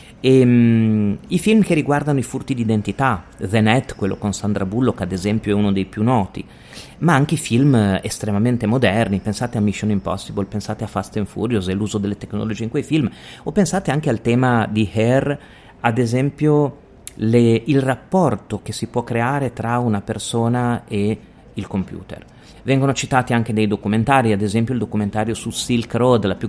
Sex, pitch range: male, 105-125 Hz